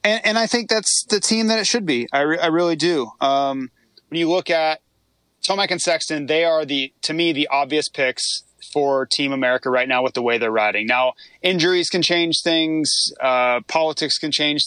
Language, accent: English, American